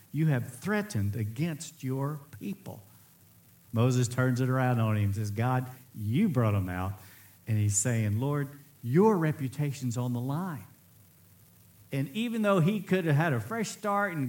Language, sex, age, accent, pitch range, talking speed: English, male, 50-69, American, 125-175 Hz, 165 wpm